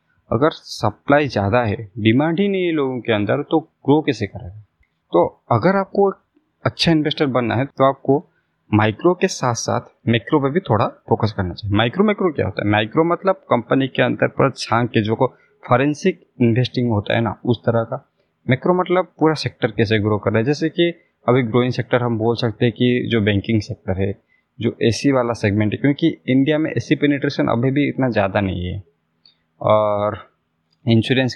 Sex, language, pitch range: male, Hindi, 105-145 Hz